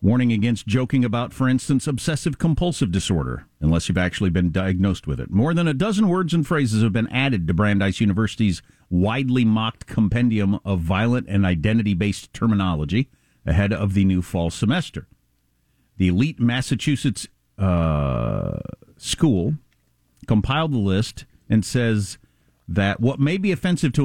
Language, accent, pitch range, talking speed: English, American, 90-130 Hz, 145 wpm